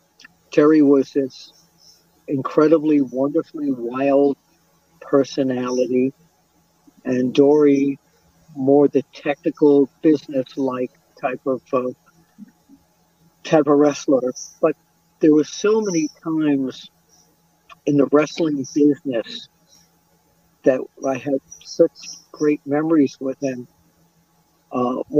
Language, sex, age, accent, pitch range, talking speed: English, male, 50-69, American, 135-155 Hz, 90 wpm